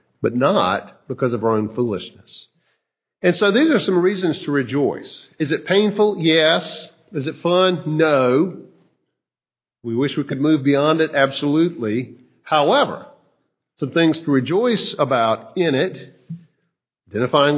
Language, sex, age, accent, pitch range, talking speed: English, male, 50-69, American, 115-160 Hz, 135 wpm